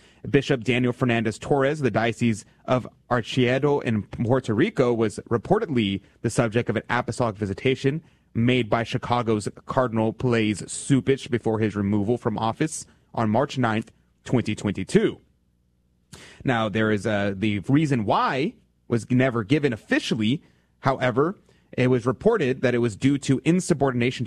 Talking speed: 135 wpm